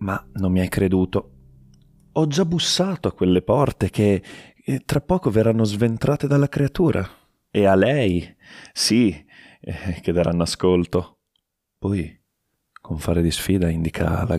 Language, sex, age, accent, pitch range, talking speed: Italian, male, 30-49, native, 85-110 Hz, 140 wpm